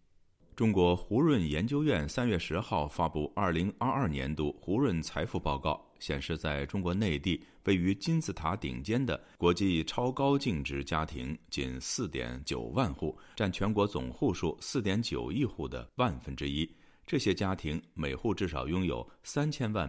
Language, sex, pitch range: Chinese, male, 75-100 Hz